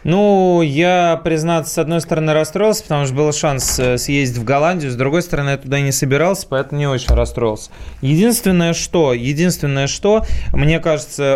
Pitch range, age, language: 120-155 Hz, 20-39, Russian